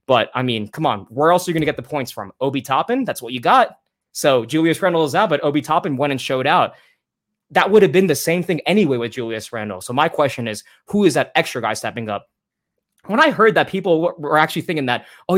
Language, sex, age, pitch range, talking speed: English, male, 20-39, 125-175 Hz, 255 wpm